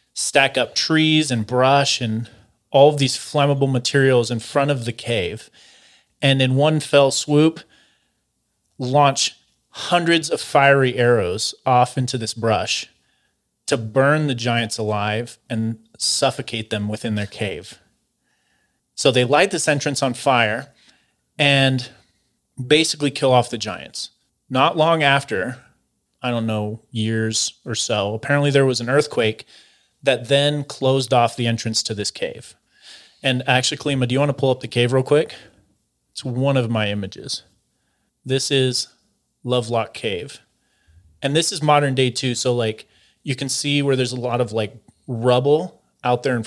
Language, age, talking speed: English, 30-49, 155 wpm